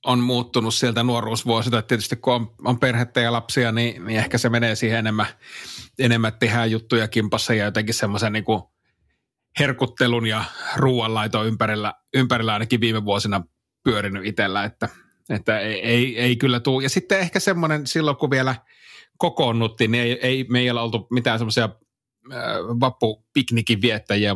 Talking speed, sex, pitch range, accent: 155 wpm, male, 105-125 Hz, native